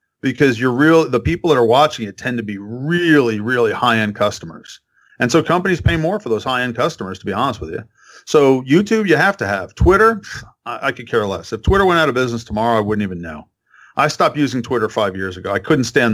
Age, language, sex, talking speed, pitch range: 40-59, English, male, 235 wpm, 115-160 Hz